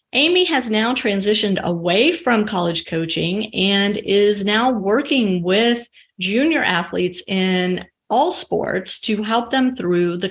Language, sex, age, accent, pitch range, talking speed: English, female, 30-49, American, 180-225 Hz, 135 wpm